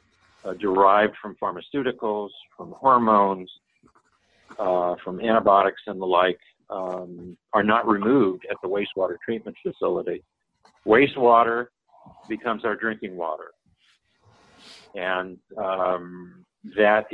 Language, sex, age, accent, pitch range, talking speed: English, male, 50-69, American, 95-120 Hz, 100 wpm